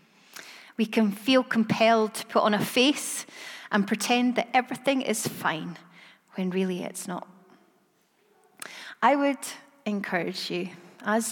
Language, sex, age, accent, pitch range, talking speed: English, female, 30-49, British, 185-225 Hz, 125 wpm